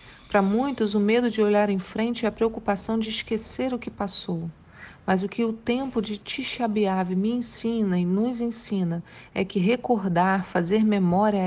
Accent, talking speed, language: Brazilian, 175 wpm, Portuguese